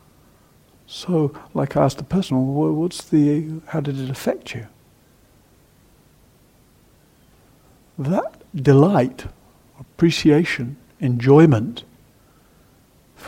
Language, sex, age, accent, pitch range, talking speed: English, male, 60-79, British, 135-185 Hz, 80 wpm